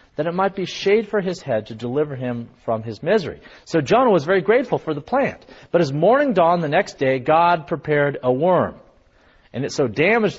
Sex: male